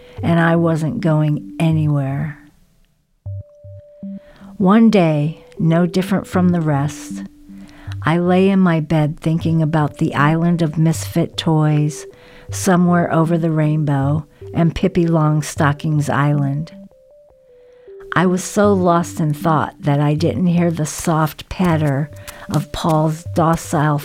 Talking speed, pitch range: 120 wpm, 150-175 Hz